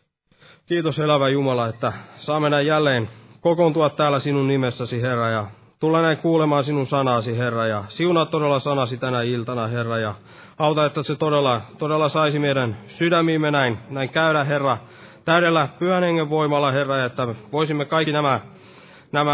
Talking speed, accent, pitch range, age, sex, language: 150 wpm, native, 125-150 Hz, 20-39, male, Finnish